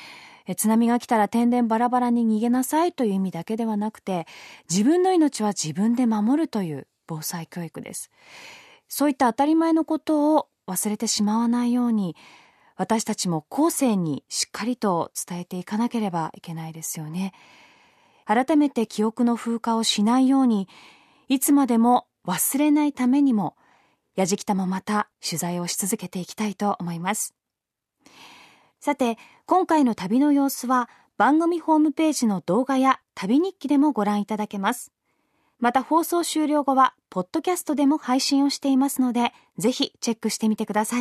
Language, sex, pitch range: Japanese, female, 205-280 Hz